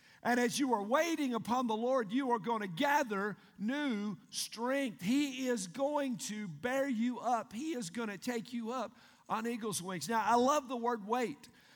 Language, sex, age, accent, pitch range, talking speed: English, male, 50-69, American, 195-255 Hz, 195 wpm